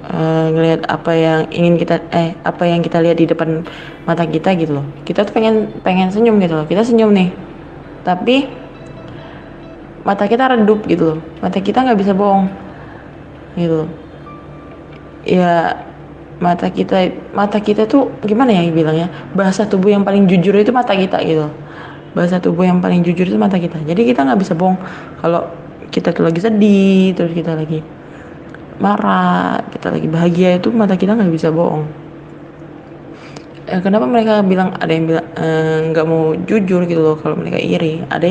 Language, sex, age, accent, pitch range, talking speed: Indonesian, female, 20-39, native, 160-195 Hz, 165 wpm